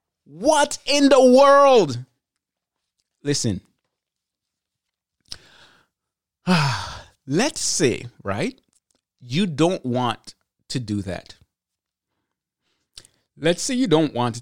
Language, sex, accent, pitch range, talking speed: English, male, American, 115-185 Hz, 80 wpm